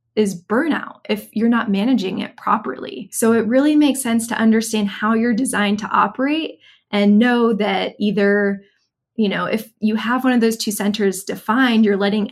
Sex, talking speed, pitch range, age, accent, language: female, 180 wpm, 200-240 Hz, 20-39, American, English